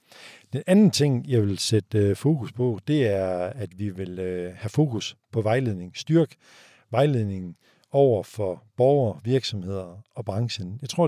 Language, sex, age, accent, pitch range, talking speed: Danish, male, 50-69, native, 105-135 Hz, 145 wpm